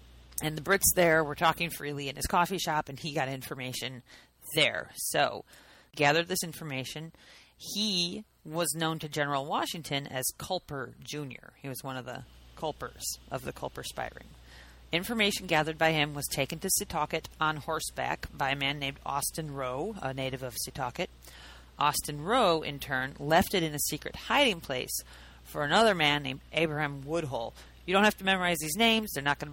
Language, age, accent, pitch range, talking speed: English, 40-59, American, 130-175 Hz, 175 wpm